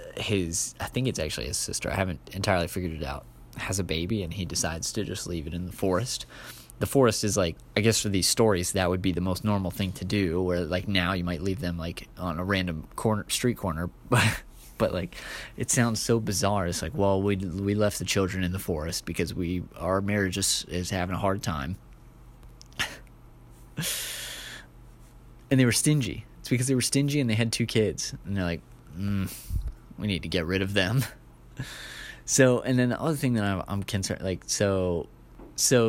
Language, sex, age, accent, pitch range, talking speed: English, male, 20-39, American, 90-115 Hz, 205 wpm